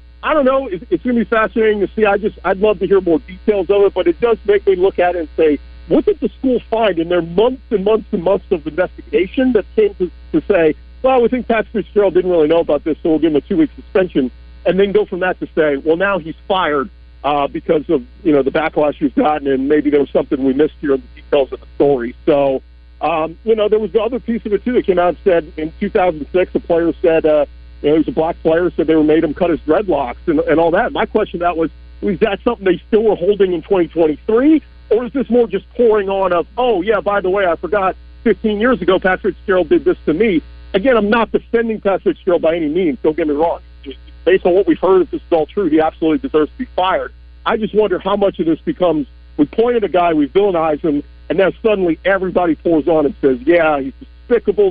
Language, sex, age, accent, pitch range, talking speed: English, male, 50-69, American, 155-220 Hz, 265 wpm